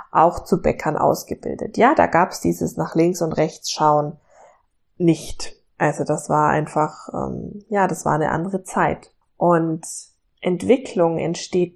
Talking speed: 150 wpm